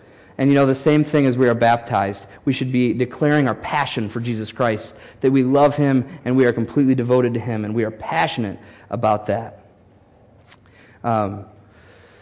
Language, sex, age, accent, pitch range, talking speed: English, male, 30-49, American, 115-150 Hz, 180 wpm